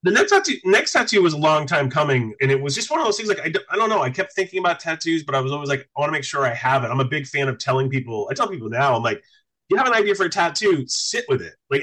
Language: English